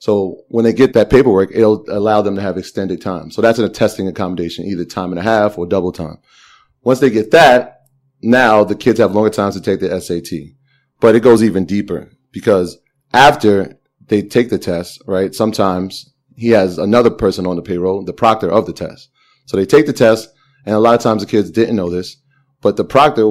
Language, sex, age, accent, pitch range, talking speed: English, male, 30-49, American, 95-115 Hz, 215 wpm